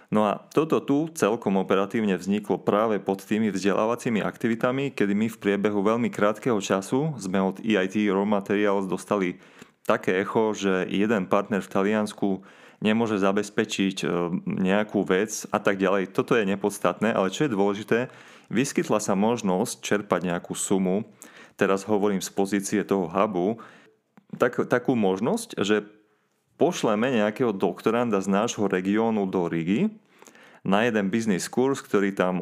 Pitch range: 95-105 Hz